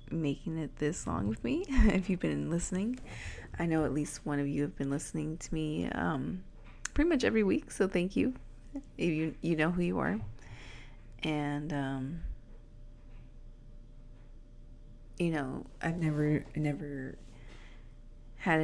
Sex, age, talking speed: female, 30-49, 140 wpm